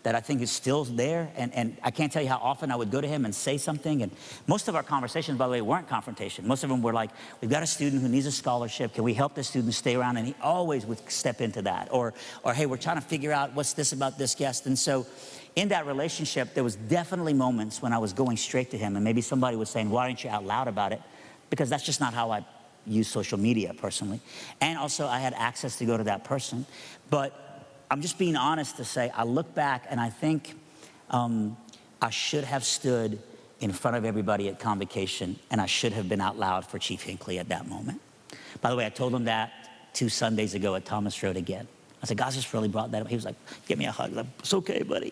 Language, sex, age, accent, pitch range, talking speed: English, male, 50-69, American, 110-140 Hz, 255 wpm